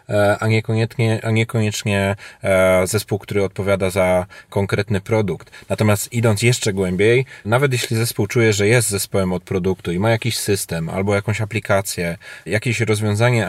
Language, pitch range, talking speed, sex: Polish, 100-115 Hz, 140 wpm, male